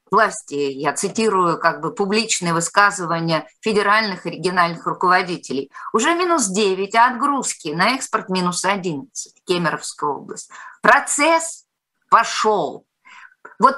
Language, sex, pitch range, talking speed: Russian, female, 185-285 Hz, 110 wpm